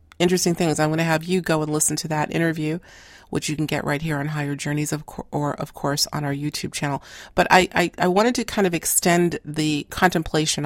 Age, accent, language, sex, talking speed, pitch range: 40-59, American, English, female, 235 wpm, 145-170 Hz